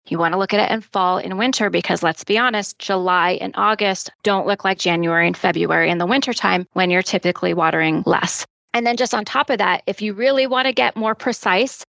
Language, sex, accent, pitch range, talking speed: English, female, American, 185-220 Hz, 230 wpm